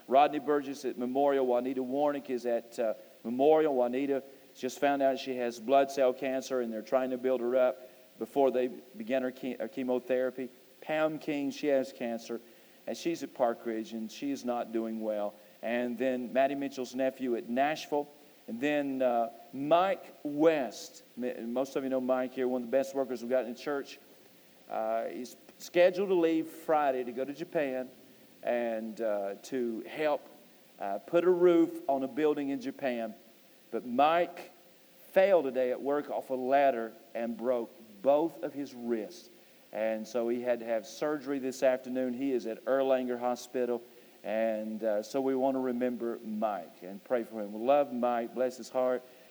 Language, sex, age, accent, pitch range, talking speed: English, male, 50-69, American, 120-140 Hz, 180 wpm